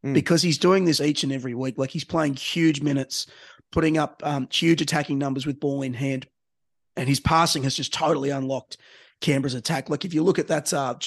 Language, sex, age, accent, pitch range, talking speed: English, male, 30-49, Australian, 135-160 Hz, 210 wpm